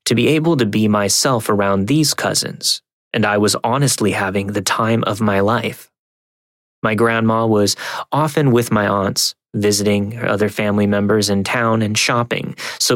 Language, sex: English, male